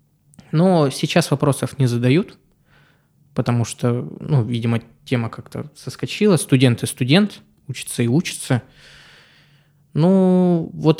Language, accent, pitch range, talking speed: Russian, native, 120-150 Hz, 110 wpm